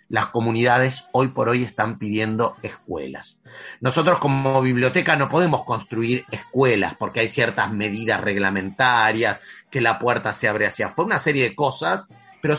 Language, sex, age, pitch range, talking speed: Spanish, male, 30-49, 120-165 Hz, 155 wpm